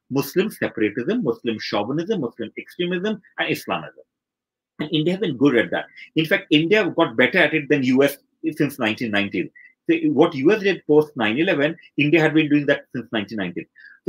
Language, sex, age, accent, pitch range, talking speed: English, male, 30-49, Indian, 135-180 Hz, 170 wpm